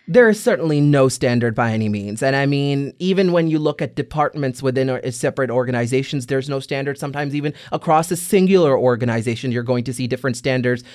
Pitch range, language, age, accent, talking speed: 125-150 Hz, English, 30-49, American, 190 wpm